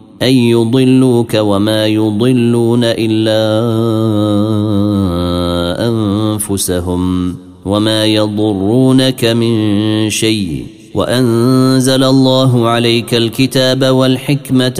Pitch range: 100-125 Hz